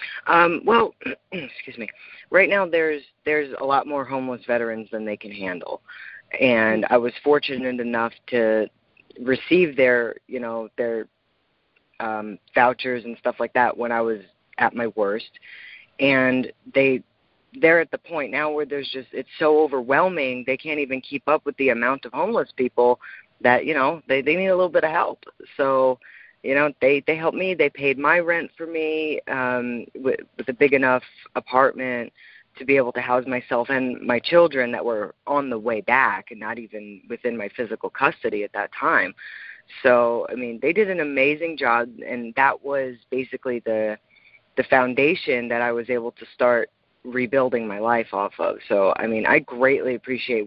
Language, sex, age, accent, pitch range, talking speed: English, female, 30-49, American, 115-140 Hz, 180 wpm